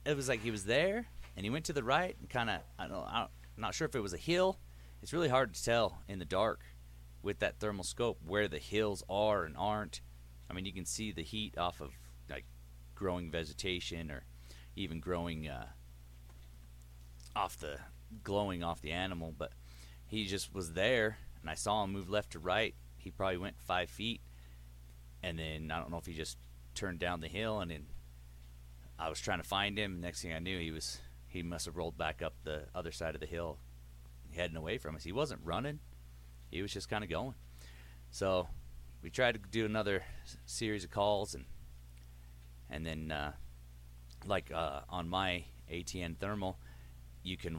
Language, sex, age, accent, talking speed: English, male, 30-49, American, 195 wpm